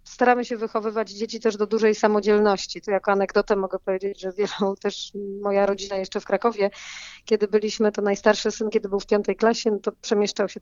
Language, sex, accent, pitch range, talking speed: Polish, female, native, 200-230 Hz, 190 wpm